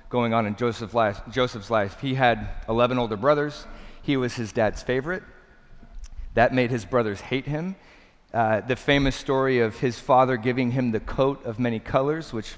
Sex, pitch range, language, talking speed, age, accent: male, 110-145 Hz, English, 170 wpm, 40-59, American